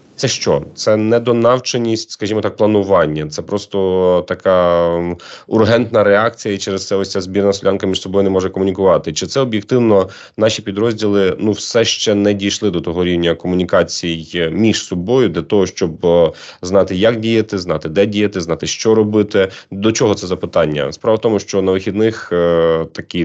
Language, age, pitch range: Ukrainian, 30-49, 85-105 Hz